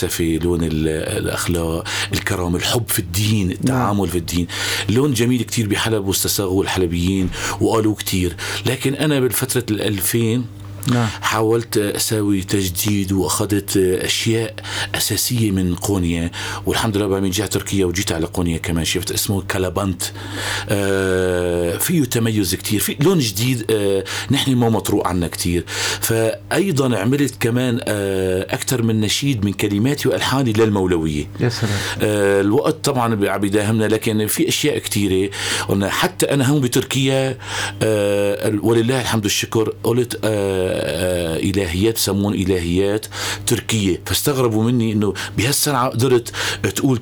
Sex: male